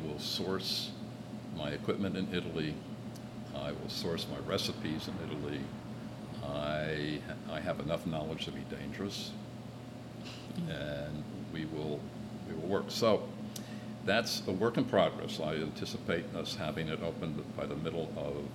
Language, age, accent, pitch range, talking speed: English, 60-79, American, 80-115 Hz, 140 wpm